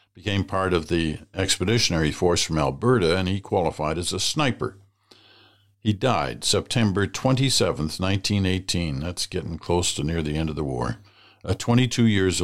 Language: English